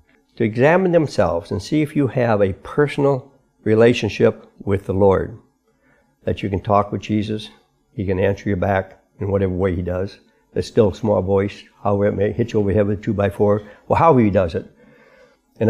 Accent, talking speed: American, 200 wpm